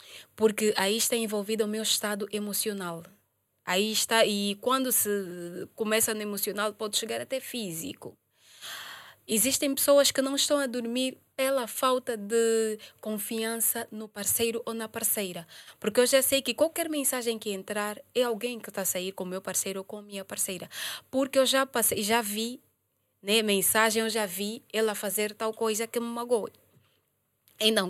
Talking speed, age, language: 170 wpm, 20-39, Portuguese